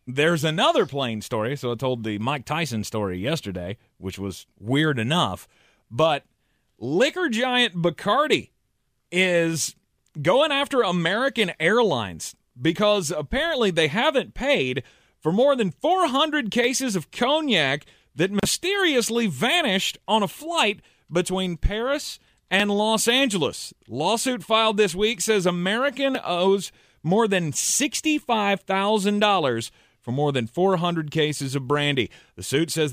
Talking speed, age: 125 wpm, 30-49